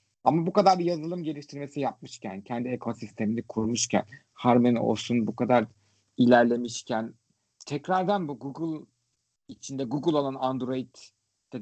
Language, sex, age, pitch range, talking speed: Turkish, male, 50-69, 110-155 Hz, 115 wpm